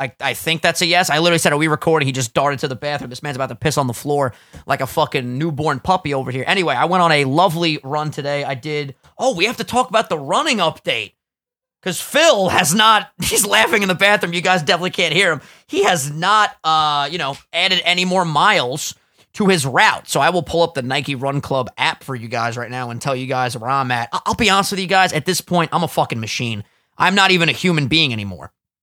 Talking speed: 255 wpm